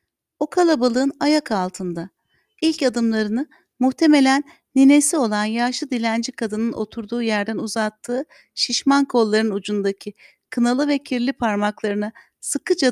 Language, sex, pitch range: Turkish, female, 205-255 Hz